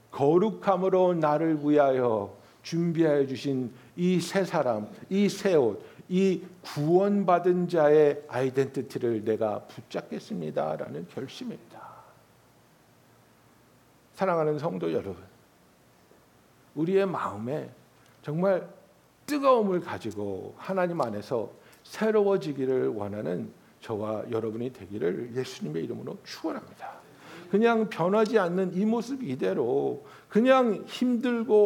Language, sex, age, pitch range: Korean, male, 60-79, 130-205 Hz